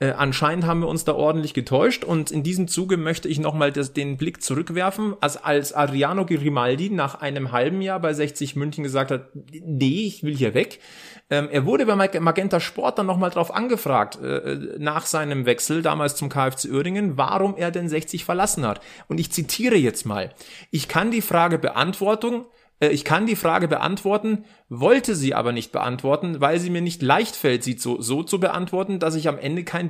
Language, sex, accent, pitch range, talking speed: German, male, German, 145-185 Hz, 190 wpm